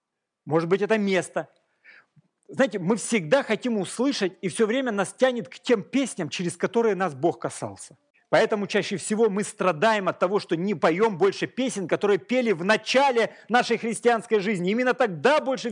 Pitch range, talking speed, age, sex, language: 155-220 Hz, 170 wpm, 40-59, male, Russian